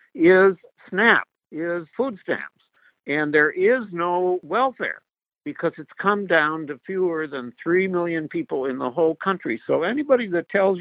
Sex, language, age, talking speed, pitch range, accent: male, English, 60-79, 155 wpm, 135-180 Hz, American